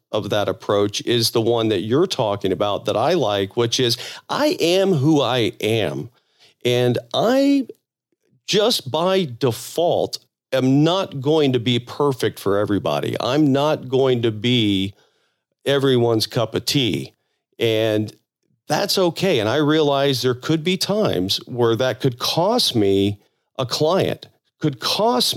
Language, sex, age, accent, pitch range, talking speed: English, male, 40-59, American, 110-145 Hz, 145 wpm